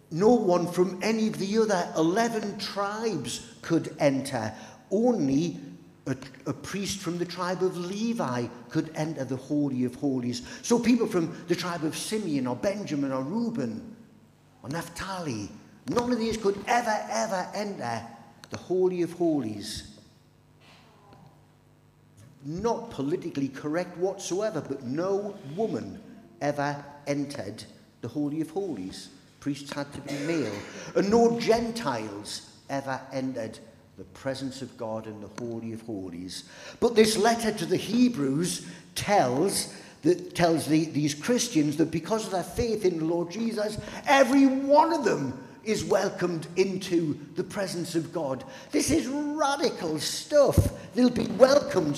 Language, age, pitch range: English, 50-69, 140-225 Hz